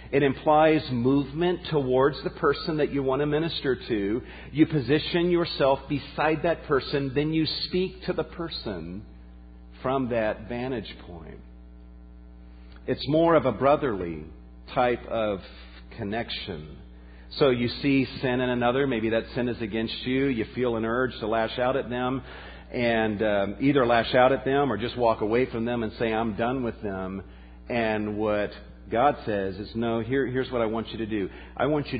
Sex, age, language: male, 50-69, English